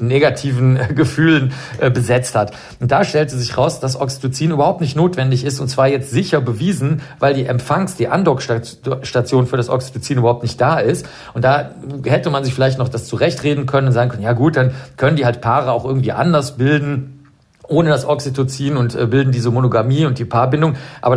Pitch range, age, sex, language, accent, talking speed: 125-145 Hz, 50-69, male, German, German, 195 wpm